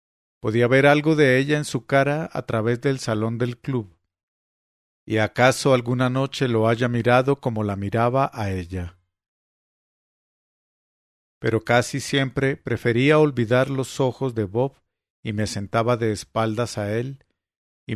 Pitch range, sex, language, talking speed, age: 105-135 Hz, male, English, 145 wpm, 50-69